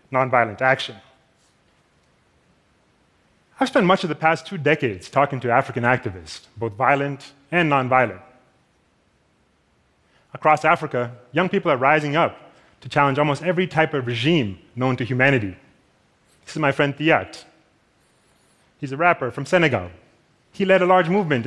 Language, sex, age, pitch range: Korean, male, 30-49, 125-170 Hz